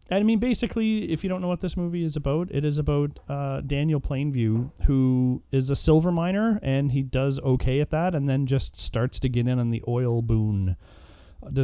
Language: English